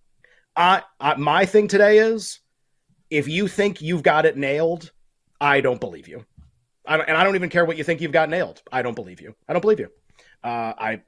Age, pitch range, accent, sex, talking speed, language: 30-49, 135-180 Hz, American, male, 215 wpm, English